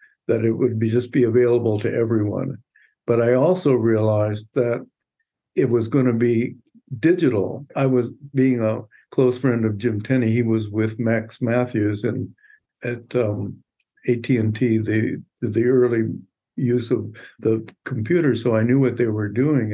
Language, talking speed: English, 160 wpm